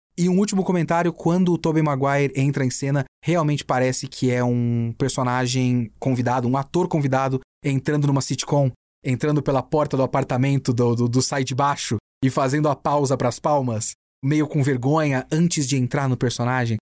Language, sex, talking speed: Portuguese, male, 170 wpm